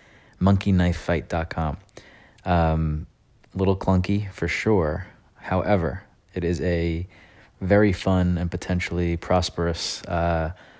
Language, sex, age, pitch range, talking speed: English, male, 30-49, 80-90 Hz, 90 wpm